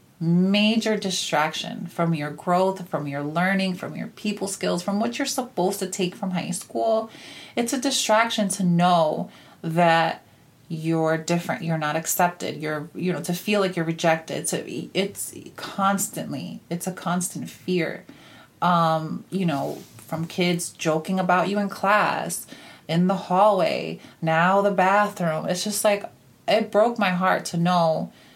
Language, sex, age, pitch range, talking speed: English, female, 30-49, 165-200 Hz, 150 wpm